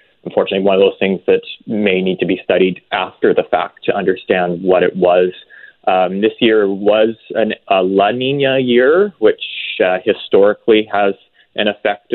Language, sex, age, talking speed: English, male, 20-39, 165 wpm